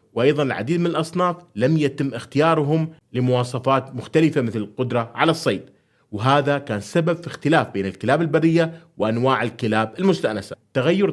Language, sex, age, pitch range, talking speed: Arabic, male, 30-49, 115-160 Hz, 135 wpm